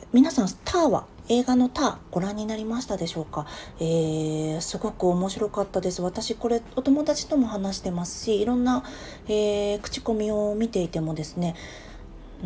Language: Japanese